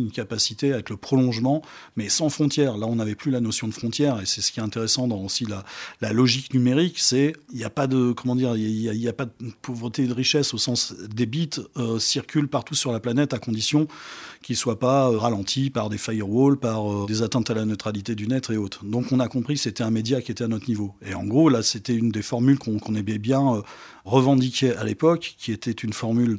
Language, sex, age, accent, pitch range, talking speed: French, male, 40-59, French, 110-135 Hz, 240 wpm